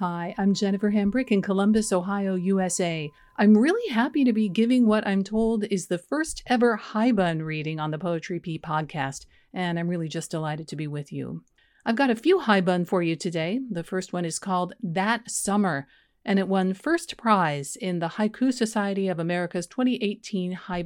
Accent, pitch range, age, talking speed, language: American, 180-225 Hz, 40-59, 195 wpm, English